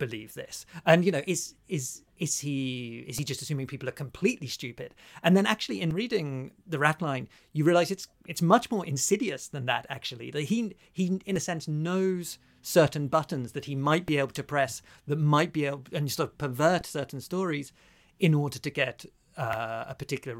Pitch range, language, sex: 130-170 Hz, English, male